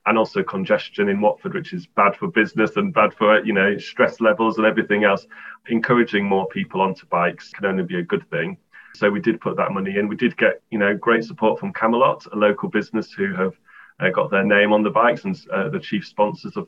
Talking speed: 235 wpm